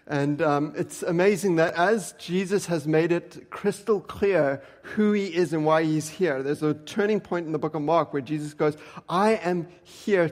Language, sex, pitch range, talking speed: English, male, 145-180 Hz, 200 wpm